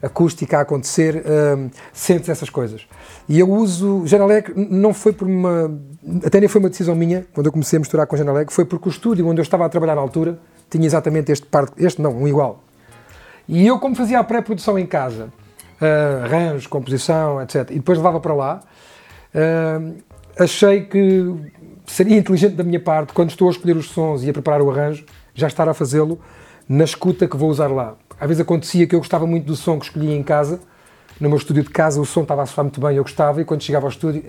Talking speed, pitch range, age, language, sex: 220 wpm, 150-180 Hz, 40-59, Portuguese, male